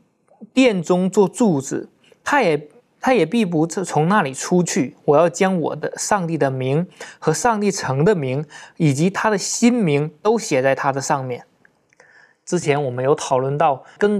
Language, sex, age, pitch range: Chinese, male, 20-39, 135-190 Hz